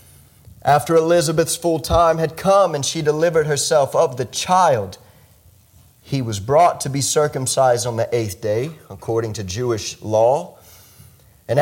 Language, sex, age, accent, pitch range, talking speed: English, male, 30-49, American, 110-160 Hz, 145 wpm